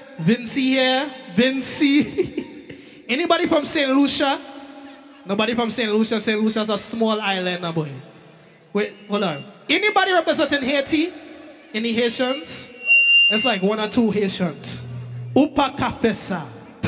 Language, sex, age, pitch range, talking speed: English, male, 20-39, 205-300 Hz, 120 wpm